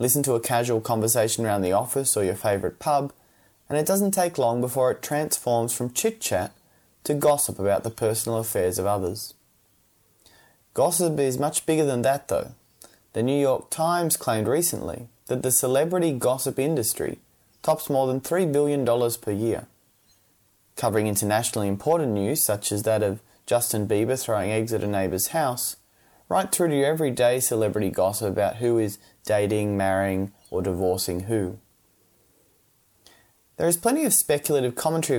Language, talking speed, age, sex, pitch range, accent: English, 155 wpm, 20-39, male, 105-140 Hz, Australian